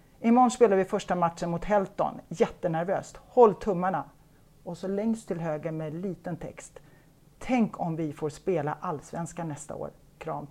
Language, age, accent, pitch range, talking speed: Swedish, 40-59, native, 155-200 Hz, 155 wpm